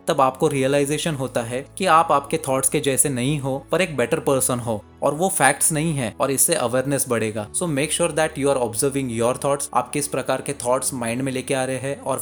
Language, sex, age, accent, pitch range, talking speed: Hindi, male, 20-39, native, 120-150 Hz, 230 wpm